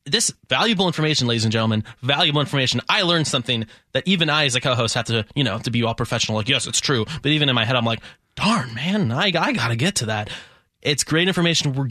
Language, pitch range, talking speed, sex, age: English, 120-165 Hz, 240 wpm, male, 20-39